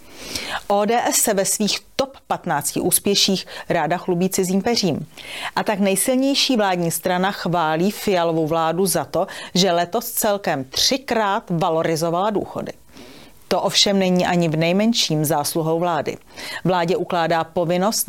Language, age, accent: Czech, 40-59, native